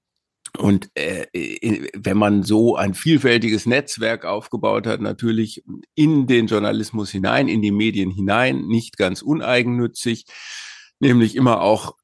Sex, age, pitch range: male, 50-69, 105-125 Hz